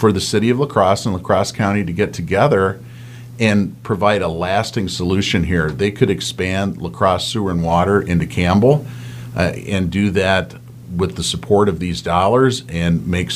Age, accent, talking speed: 40-59, American, 185 wpm